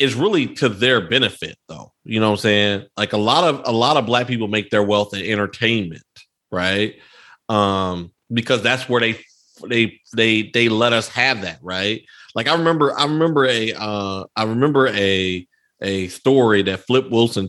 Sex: male